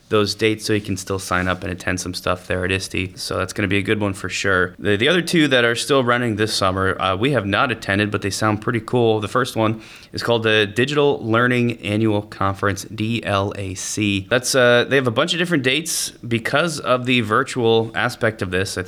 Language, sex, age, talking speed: English, male, 20-39, 230 wpm